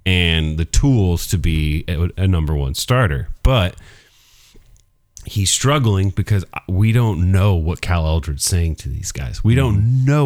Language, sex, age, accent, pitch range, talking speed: English, male, 30-49, American, 90-120 Hz, 150 wpm